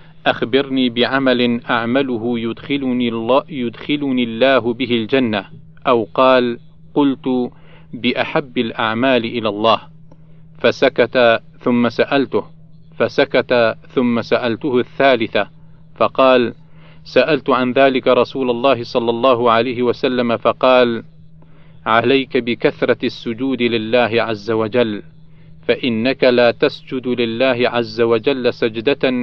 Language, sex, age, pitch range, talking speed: Arabic, male, 40-59, 120-145 Hz, 90 wpm